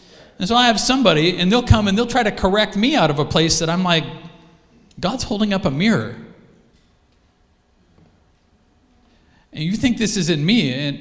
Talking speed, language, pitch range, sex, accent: 185 wpm, English, 140-235 Hz, male, American